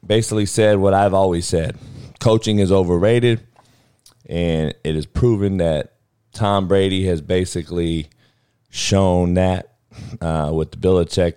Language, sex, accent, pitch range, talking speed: English, male, American, 95-120 Hz, 135 wpm